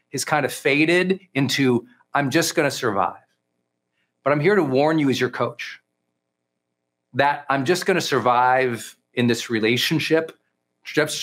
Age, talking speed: 40-59, 145 wpm